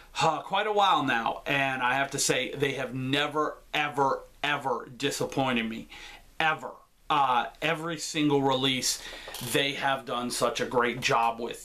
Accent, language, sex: American, English, male